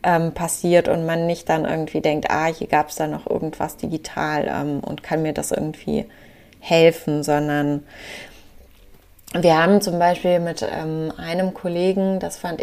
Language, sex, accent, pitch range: German, female, German, 155-185 Hz